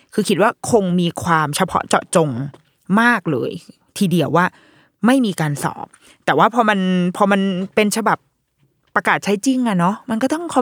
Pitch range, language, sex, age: 160-225 Hz, Thai, female, 20-39